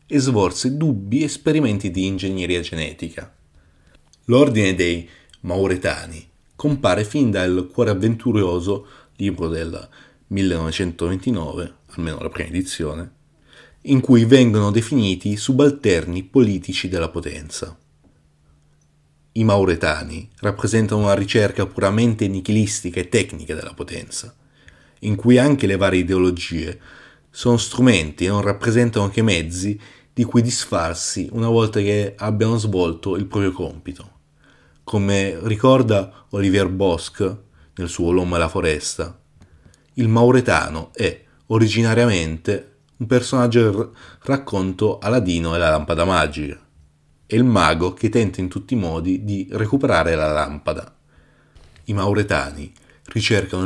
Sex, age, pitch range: male, 30-49, 85-115 Hz